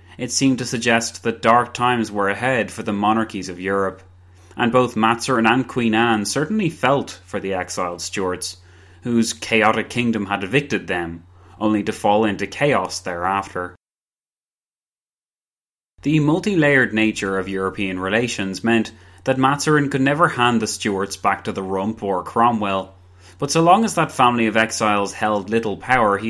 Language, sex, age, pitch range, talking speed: English, male, 20-39, 95-115 Hz, 160 wpm